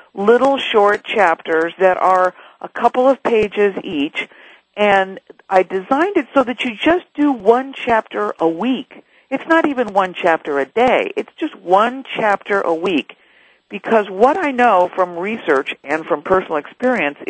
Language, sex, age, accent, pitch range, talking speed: English, female, 50-69, American, 185-255 Hz, 160 wpm